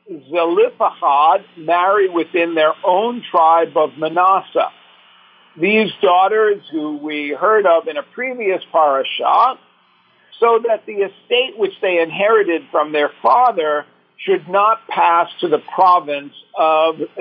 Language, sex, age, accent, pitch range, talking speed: English, male, 50-69, American, 160-215 Hz, 120 wpm